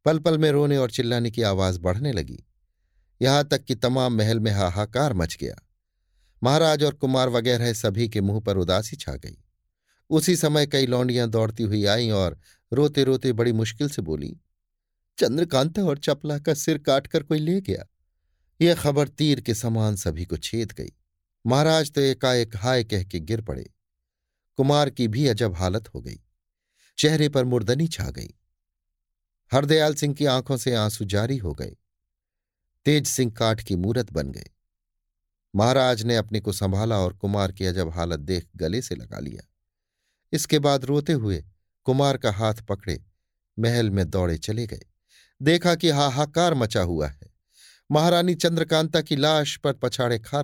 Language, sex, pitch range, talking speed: Hindi, male, 95-140 Hz, 165 wpm